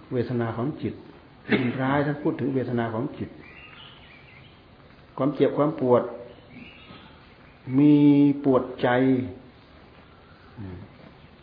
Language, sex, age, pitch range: Thai, male, 60-79, 115-140 Hz